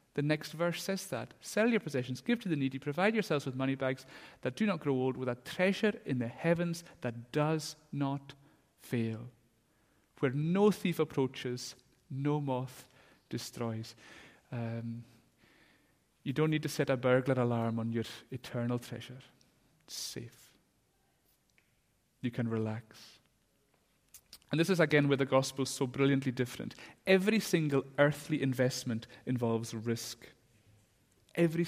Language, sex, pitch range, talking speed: English, male, 120-150 Hz, 140 wpm